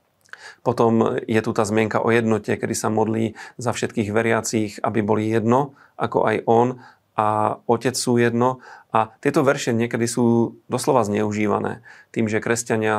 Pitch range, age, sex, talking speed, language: 110-115 Hz, 40-59, male, 150 wpm, Slovak